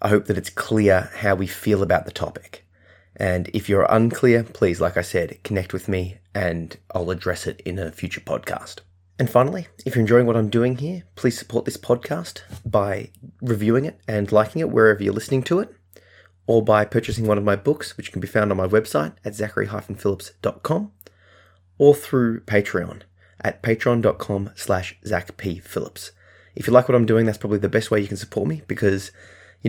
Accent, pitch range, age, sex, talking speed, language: Australian, 90-110 Hz, 20-39, male, 195 wpm, English